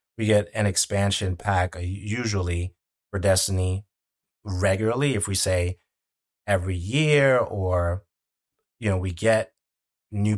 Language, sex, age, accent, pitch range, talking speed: English, male, 30-49, American, 90-100 Hz, 115 wpm